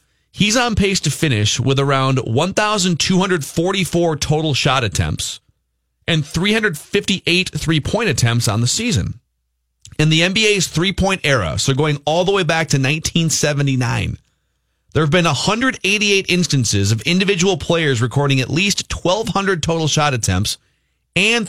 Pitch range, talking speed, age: 115-170 Hz, 130 wpm, 30-49